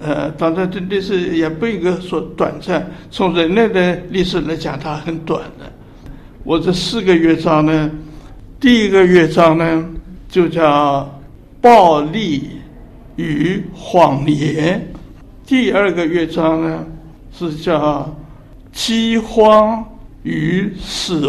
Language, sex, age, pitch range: Chinese, male, 60-79, 155-180 Hz